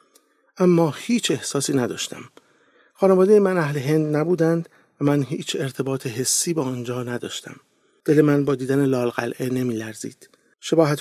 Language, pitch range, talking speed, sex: English, 125-165 Hz, 135 wpm, male